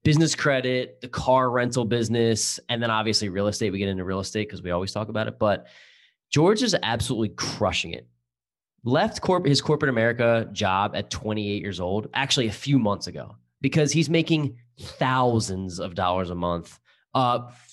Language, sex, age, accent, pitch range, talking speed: English, male, 20-39, American, 100-125 Hz, 175 wpm